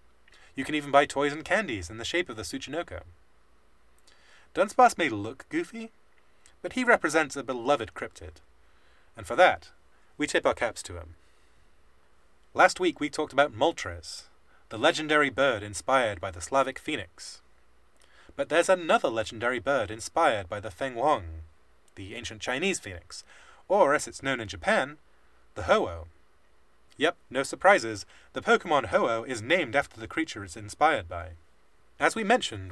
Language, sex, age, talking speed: English, male, 30-49, 155 wpm